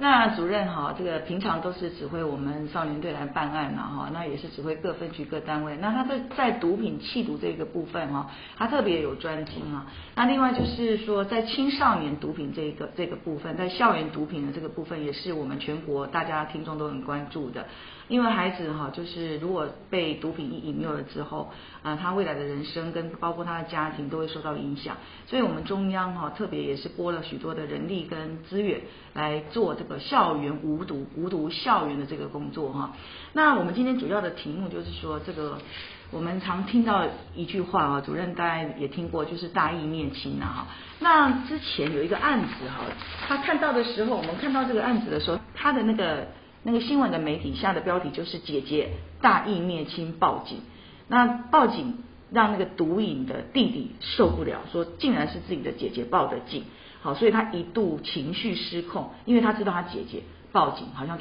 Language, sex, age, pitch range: Chinese, female, 40-59, 150-215 Hz